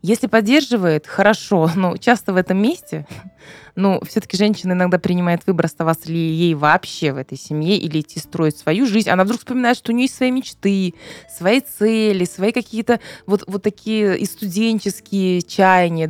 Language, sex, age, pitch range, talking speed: Russian, female, 20-39, 165-210 Hz, 170 wpm